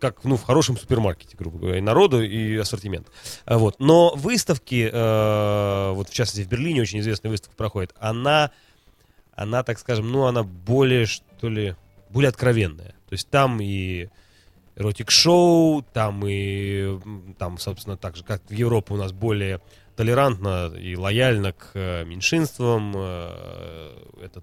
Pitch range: 95-125 Hz